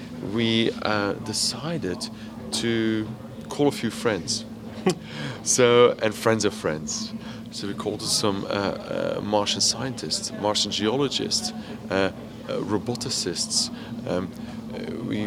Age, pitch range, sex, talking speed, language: 30-49, 110-145 Hz, male, 110 wpm, English